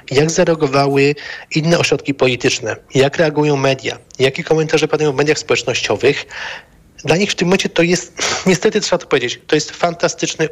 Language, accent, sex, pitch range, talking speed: Polish, native, male, 140-170 Hz, 160 wpm